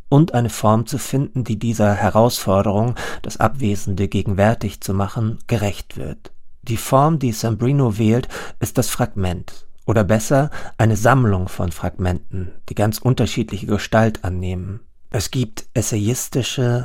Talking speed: 130 wpm